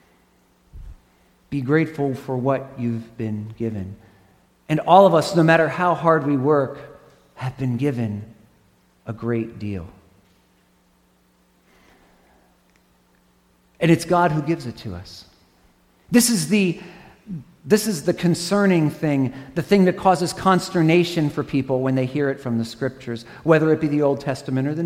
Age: 40-59